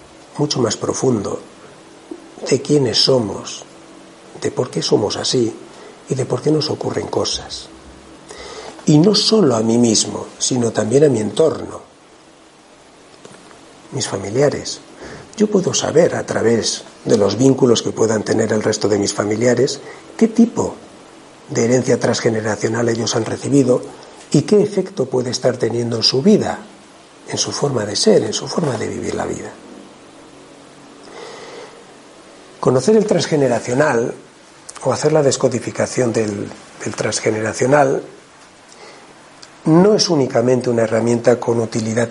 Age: 60-79